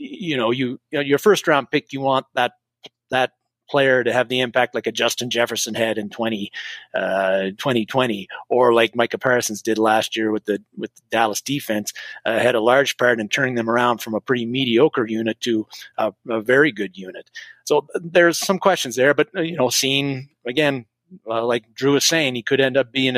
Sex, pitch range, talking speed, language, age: male, 120-145 Hz, 205 wpm, English, 30-49